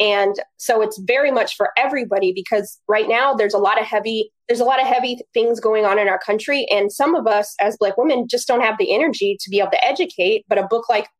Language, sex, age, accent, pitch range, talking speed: English, female, 20-39, American, 195-230 Hz, 250 wpm